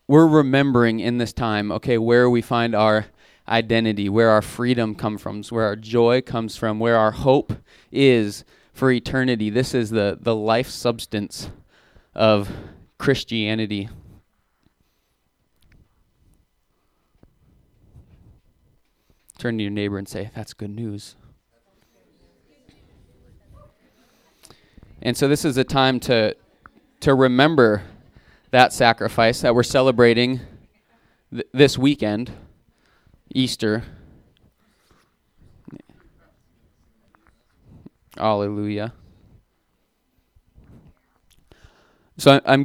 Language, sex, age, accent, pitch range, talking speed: English, male, 20-39, American, 105-120 Hz, 90 wpm